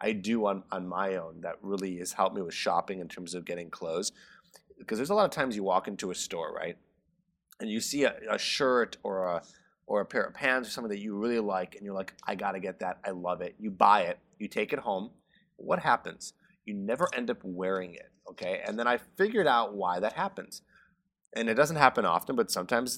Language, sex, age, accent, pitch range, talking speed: English, male, 30-49, American, 95-140 Hz, 235 wpm